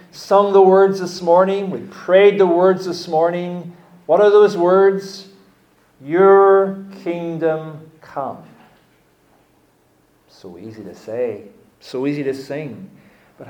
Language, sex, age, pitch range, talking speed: English, male, 40-59, 150-190 Hz, 120 wpm